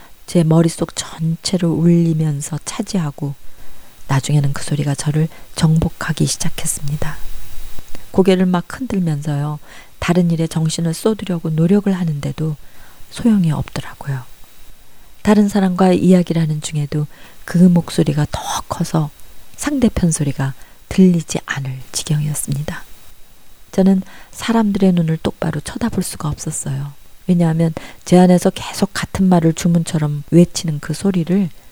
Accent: native